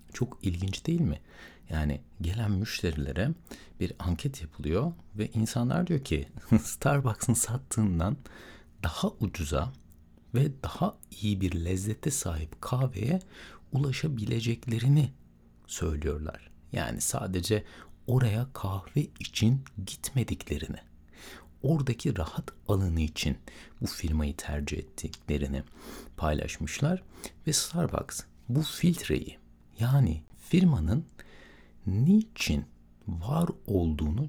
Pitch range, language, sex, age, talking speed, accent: 80-130 Hz, Turkish, male, 60-79, 90 wpm, native